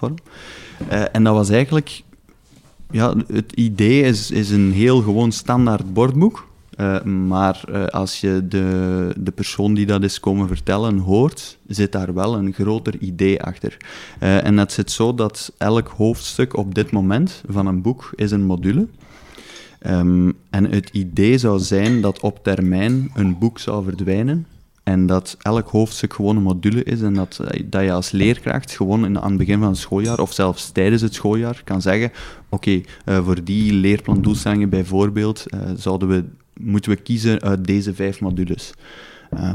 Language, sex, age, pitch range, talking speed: Dutch, male, 20-39, 95-110 Hz, 160 wpm